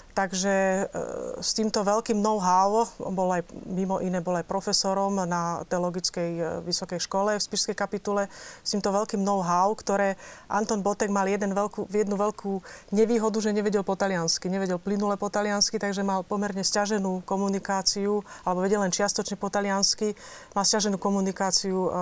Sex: female